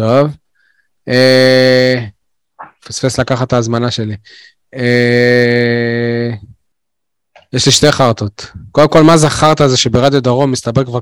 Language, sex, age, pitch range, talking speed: Hebrew, male, 20-39, 120-180 Hz, 125 wpm